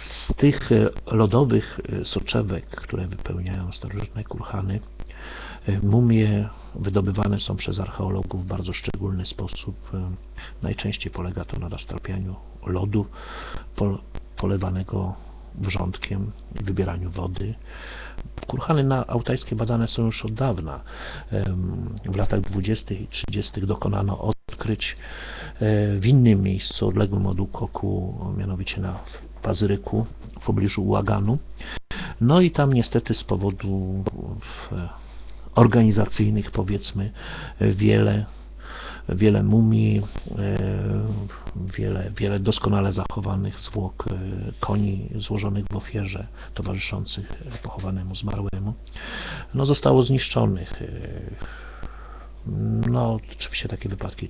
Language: Polish